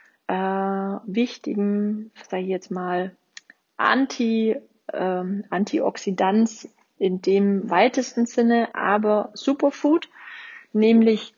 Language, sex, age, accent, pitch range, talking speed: German, female, 30-49, German, 185-215 Hz, 80 wpm